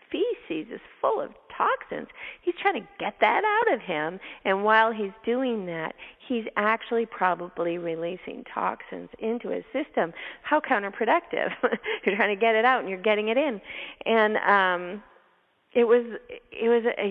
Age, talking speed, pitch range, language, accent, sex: 40-59, 165 wpm, 180-255 Hz, English, American, female